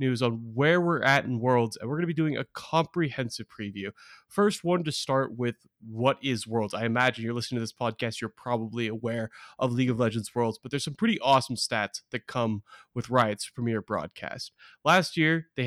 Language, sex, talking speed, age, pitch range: English, male, 205 wpm, 20-39, 120-160 Hz